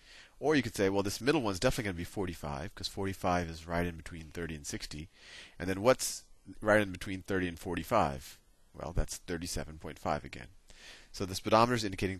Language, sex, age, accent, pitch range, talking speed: English, male, 30-49, American, 80-105 Hz, 190 wpm